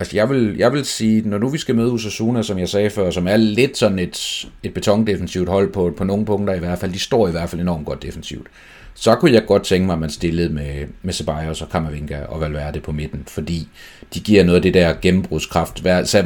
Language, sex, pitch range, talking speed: Danish, male, 85-105 Hz, 245 wpm